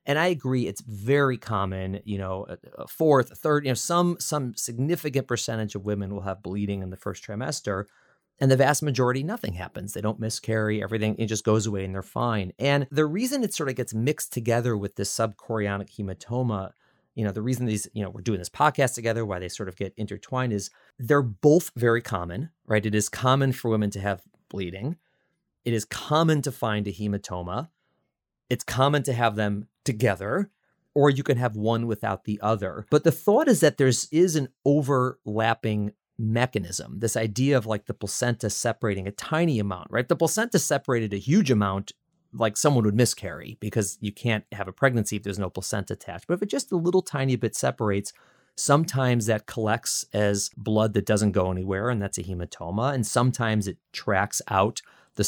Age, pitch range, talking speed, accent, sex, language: 30-49, 105-135 Hz, 195 wpm, American, male, English